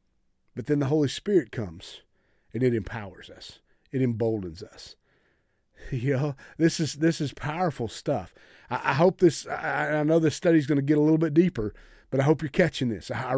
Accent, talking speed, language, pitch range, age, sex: American, 200 wpm, English, 120-155 Hz, 40-59, male